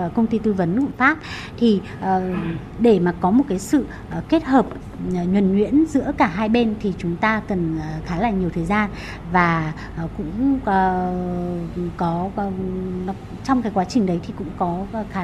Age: 20-39